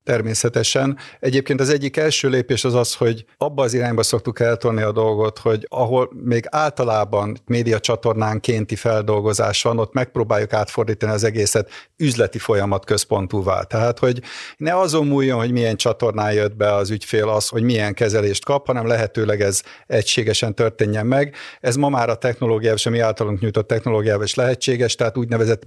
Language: Hungarian